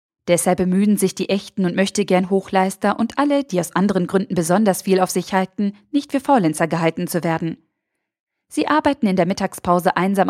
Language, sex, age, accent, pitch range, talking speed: German, female, 20-39, German, 175-205 Hz, 185 wpm